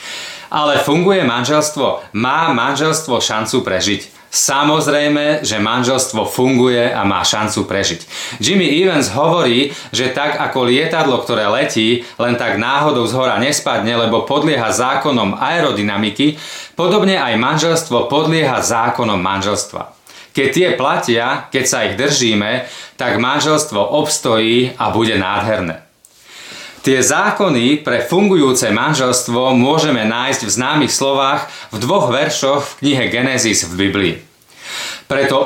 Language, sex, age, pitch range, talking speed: Slovak, male, 30-49, 110-145 Hz, 120 wpm